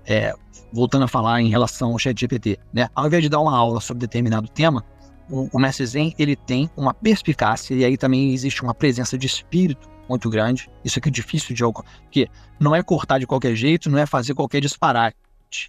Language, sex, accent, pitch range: Portuguese, male, Brazilian, 120-165 Hz